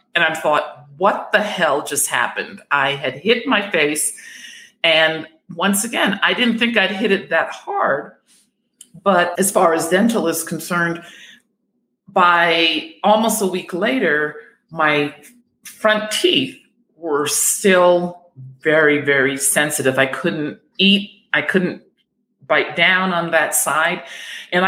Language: English